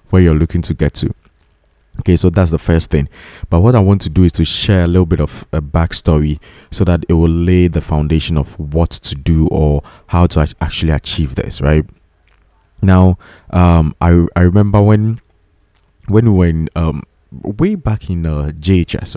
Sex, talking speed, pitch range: male, 180 wpm, 80-95 Hz